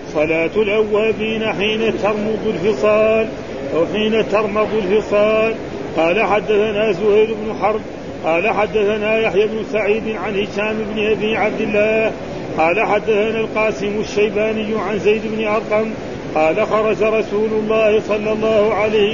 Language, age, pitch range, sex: Arabic, 40-59, 210-220 Hz, male